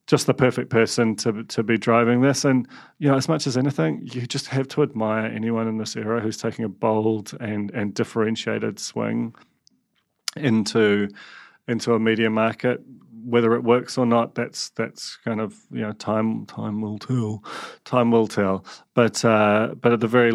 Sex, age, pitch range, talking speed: male, 30-49, 105-115 Hz, 185 wpm